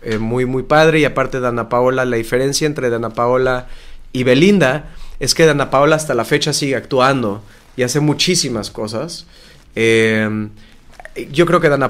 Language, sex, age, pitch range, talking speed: Portuguese, male, 30-49, 125-160 Hz, 170 wpm